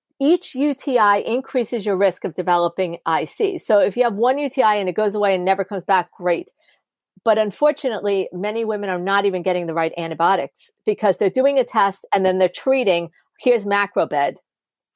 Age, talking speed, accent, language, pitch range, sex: 50-69, 180 wpm, American, English, 185-230 Hz, female